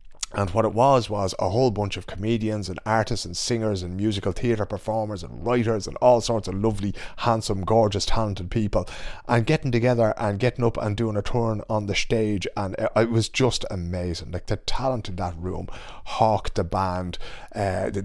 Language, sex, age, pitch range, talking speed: English, male, 30-49, 95-115 Hz, 195 wpm